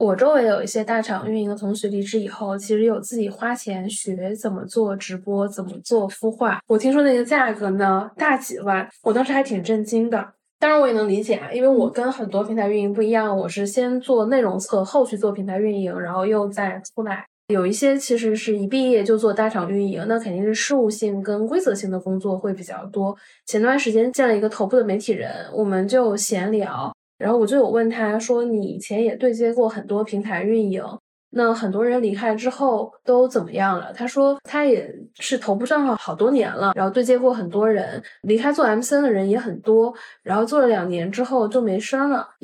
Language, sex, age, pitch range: Chinese, female, 10-29, 200-250 Hz